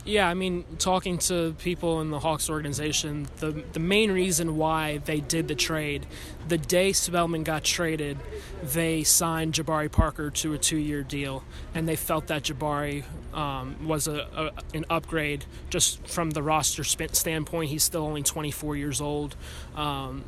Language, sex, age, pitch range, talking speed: English, male, 20-39, 145-165 Hz, 170 wpm